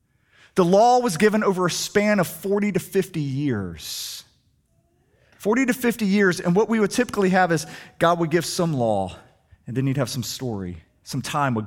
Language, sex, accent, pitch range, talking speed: English, male, American, 105-135 Hz, 190 wpm